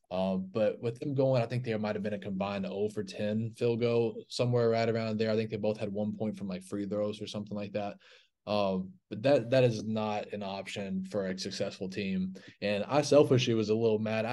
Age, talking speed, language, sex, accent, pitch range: 20-39, 235 wpm, English, male, American, 105-115 Hz